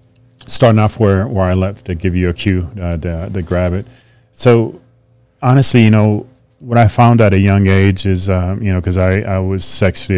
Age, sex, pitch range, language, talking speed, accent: 30-49, male, 90-115 Hz, English, 210 wpm, American